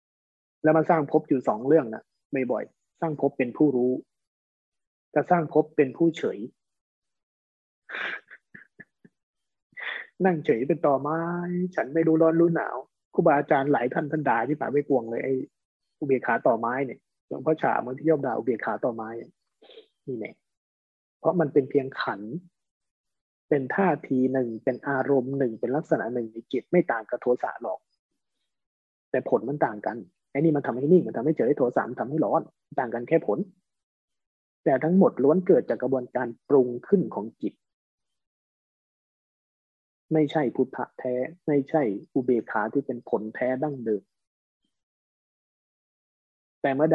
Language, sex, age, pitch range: Thai, male, 20-39, 120-155 Hz